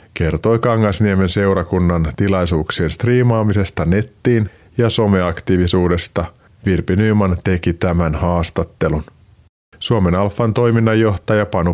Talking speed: 85 wpm